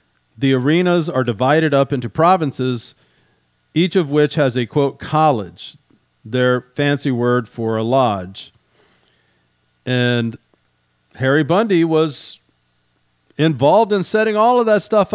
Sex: male